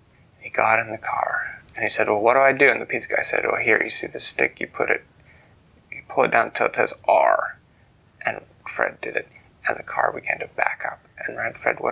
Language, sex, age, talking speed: English, male, 20-39, 245 wpm